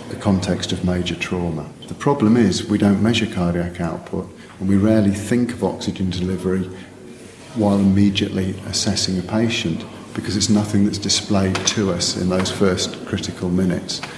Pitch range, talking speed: 95-110 Hz, 155 wpm